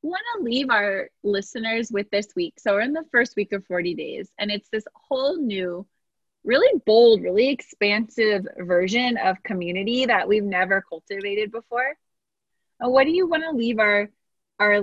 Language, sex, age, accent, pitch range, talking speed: English, female, 20-39, American, 195-240 Hz, 170 wpm